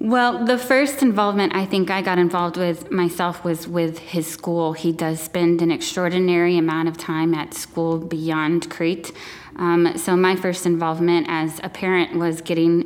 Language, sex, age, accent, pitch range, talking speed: English, female, 20-39, American, 165-190 Hz, 175 wpm